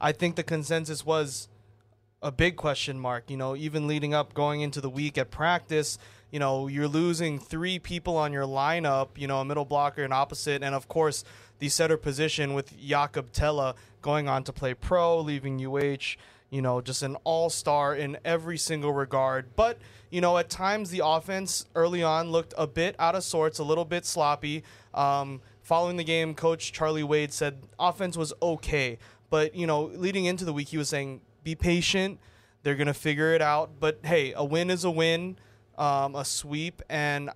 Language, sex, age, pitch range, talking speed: English, male, 20-39, 135-165 Hz, 195 wpm